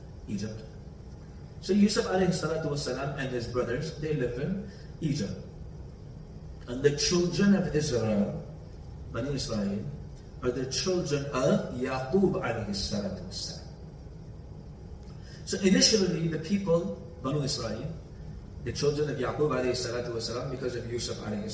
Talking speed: 125 wpm